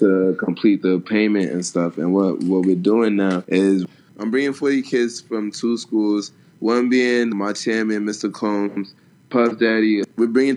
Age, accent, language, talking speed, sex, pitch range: 20-39, American, English, 170 wpm, male, 100-115 Hz